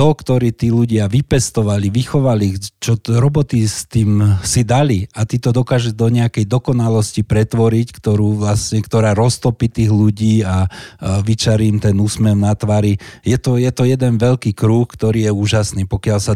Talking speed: 170 wpm